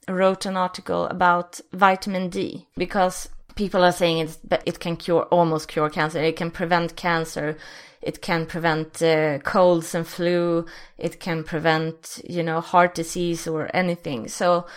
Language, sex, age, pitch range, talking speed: English, female, 20-39, 165-195 Hz, 155 wpm